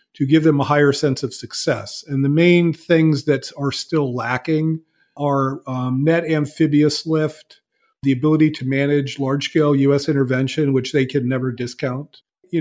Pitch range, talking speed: 135-170 Hz, 160 wpm